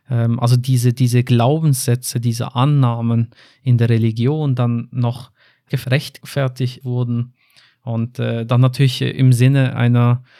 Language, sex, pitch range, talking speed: German, male, 125-135 Hz, 110 wpm